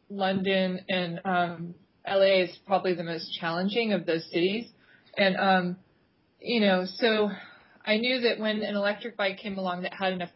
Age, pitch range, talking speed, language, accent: 30-49, 175-205 Hz, 170 wpm, English, American